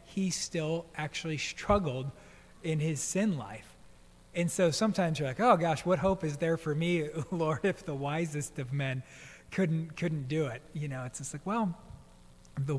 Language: English